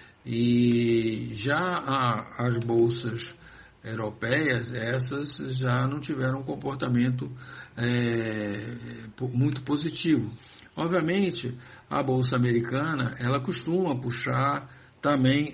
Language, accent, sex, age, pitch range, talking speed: Portuguese, Brazilian, male, 60-79, 120-150 Hz, 80 wpm